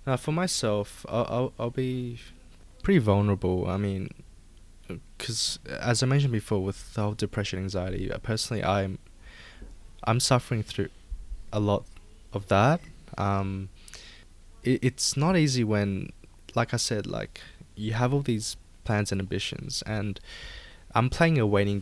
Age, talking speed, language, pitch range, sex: 20-39, 145 wpm, English, 90-115 Hz, male